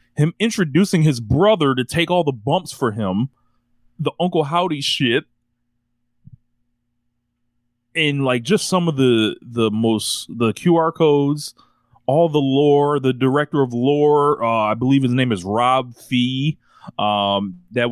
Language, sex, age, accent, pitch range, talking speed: English, male, 30-49, American, 120-145 Hz, 145 wpm